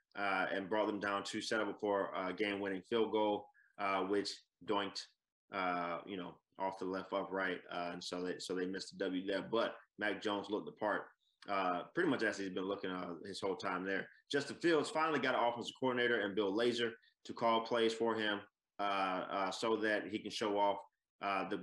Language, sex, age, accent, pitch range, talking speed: English, male, 20-39, American, 100-115 Hz, 215 wpm